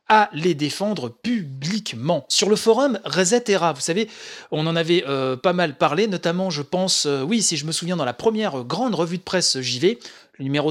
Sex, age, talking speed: male, 30-49, 205 wpm